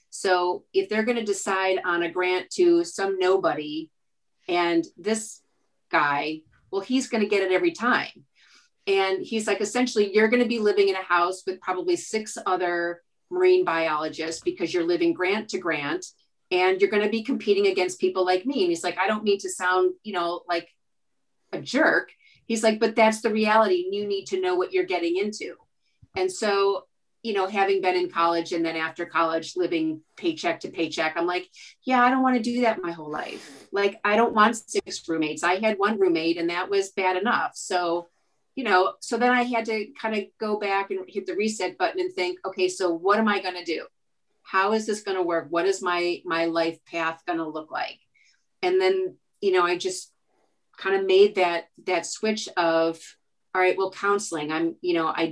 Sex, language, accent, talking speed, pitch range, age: female, English, American, 205 wpm, 175-225 Hz, 40-59